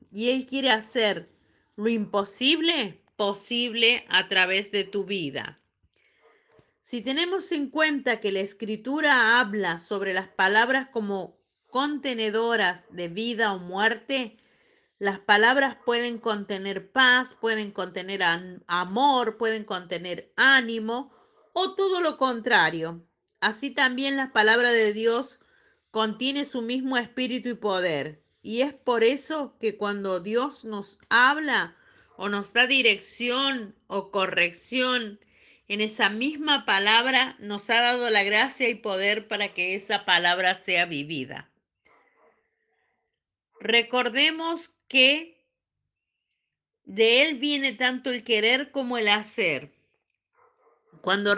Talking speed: 115 wpm